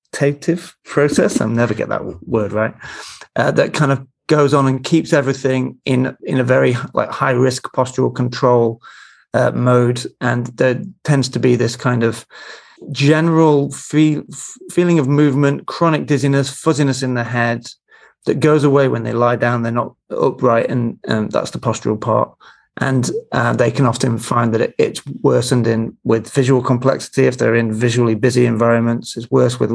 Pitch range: 120-140 Hz